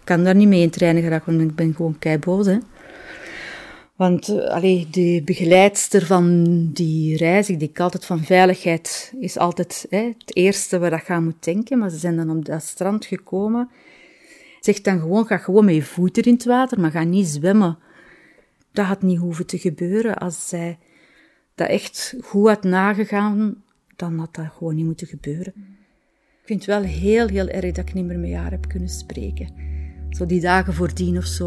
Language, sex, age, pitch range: Dutch, female, 30-49, 150-195 Hz